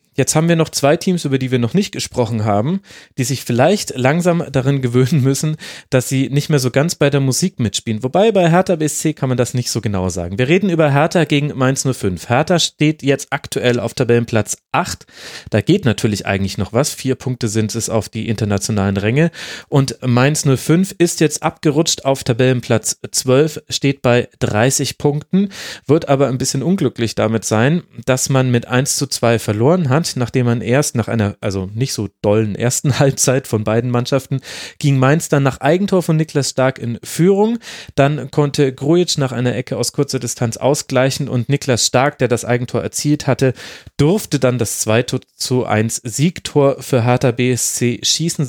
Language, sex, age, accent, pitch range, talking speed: German, male, 30-49, German, 120-150 Hz, 185 wpm